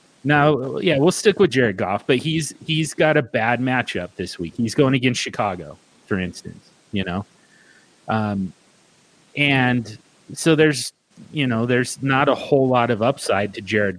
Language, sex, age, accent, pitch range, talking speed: English, male, 30-49, American, 115-135 Hz, 165 wpm